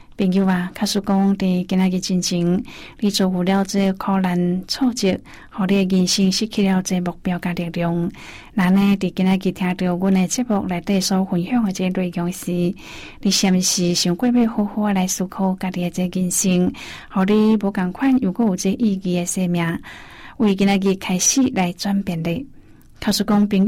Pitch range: 180-205 Hz